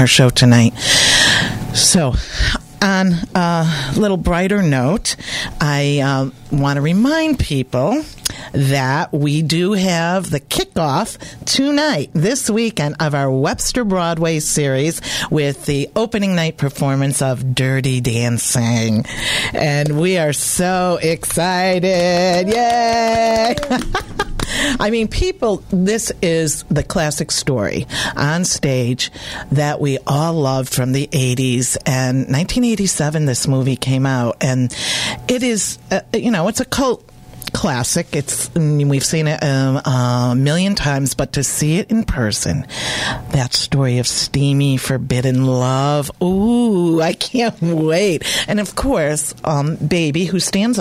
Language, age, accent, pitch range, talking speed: English, 50-69, American, 135-180 Hz, 125 wpm